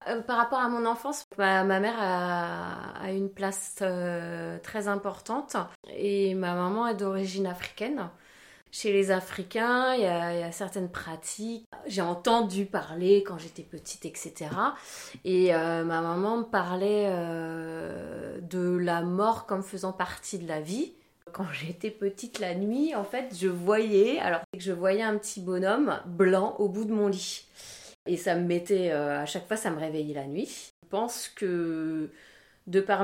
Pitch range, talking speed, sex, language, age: 175-210 Hz, 175 wpm, female, French, 20-39